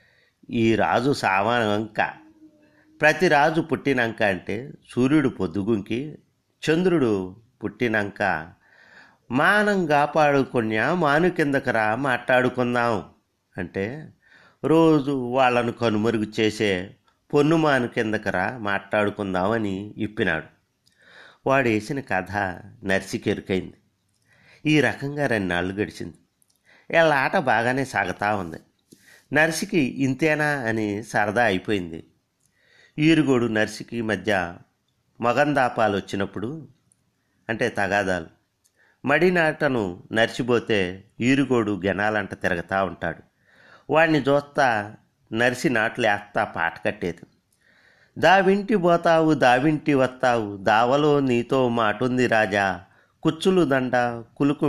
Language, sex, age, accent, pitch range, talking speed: Telugu, male, 50-69, native, 100-140 Hz, 80 wpm